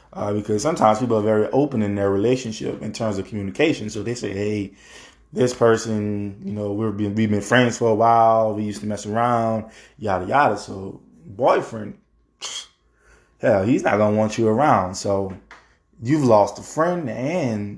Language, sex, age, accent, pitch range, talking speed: English, male, 20-39, American, 100-120 Hz, 170 wpm